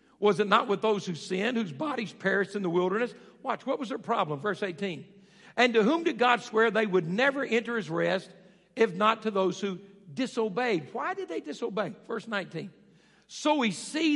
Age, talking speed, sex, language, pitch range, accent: 60-79, 200 wpm, male, English, 195-275 Hz, American